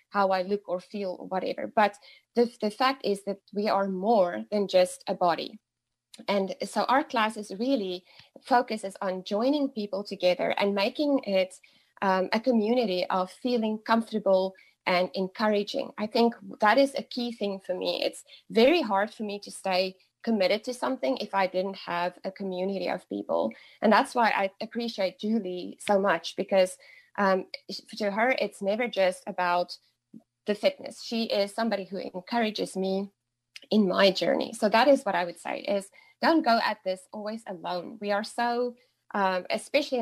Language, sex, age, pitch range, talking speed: English, female, 20-39, 185-230 Hz, 170 wpm